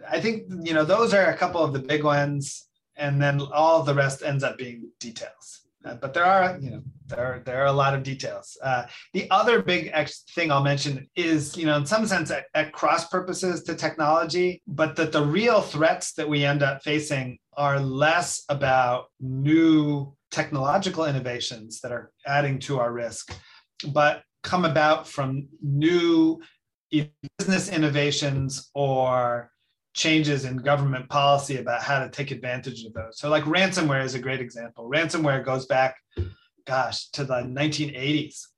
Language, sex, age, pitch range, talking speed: English, male, 30-49, 130-155 Hz, 170 wpm